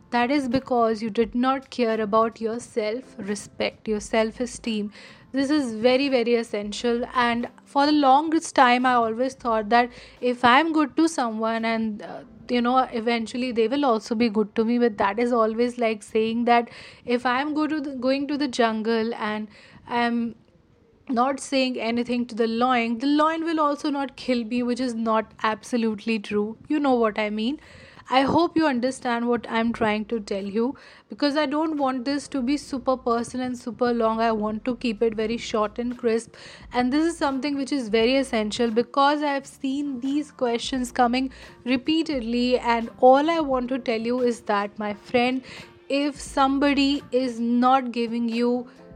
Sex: female